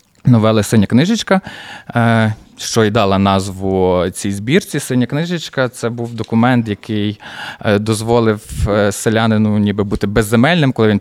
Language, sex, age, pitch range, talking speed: Ukrainian, male, 20-39, 105-125 Hz, 120 wpm